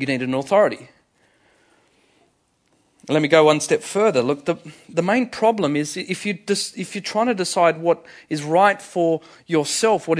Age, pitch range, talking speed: 30-49, 150-220 Hz, 165 wpm